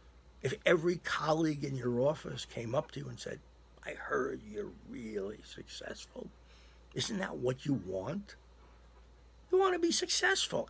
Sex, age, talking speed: male, 60-79, 150 wpm